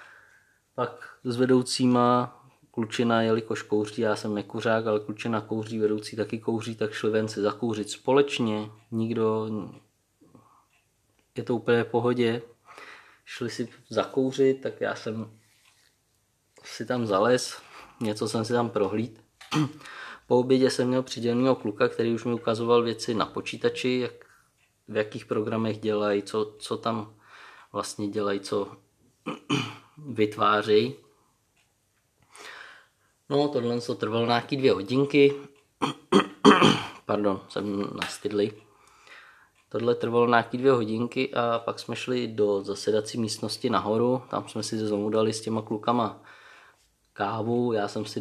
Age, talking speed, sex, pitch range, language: 20-39, 125 wpm, male, 105-120 Hz, Czech